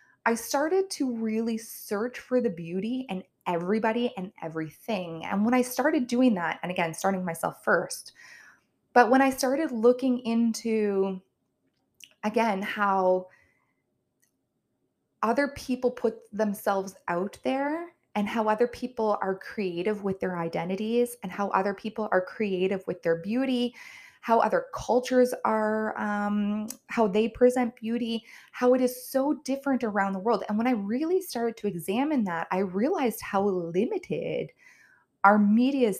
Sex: female